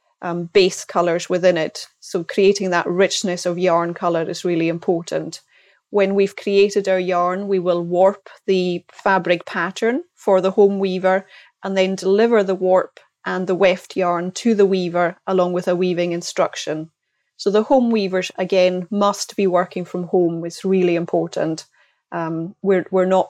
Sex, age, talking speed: female, 30-49, 165 wpm